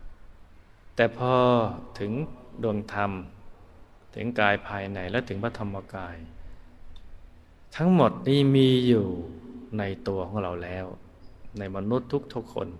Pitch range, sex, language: 90-110 Hz, male, Thai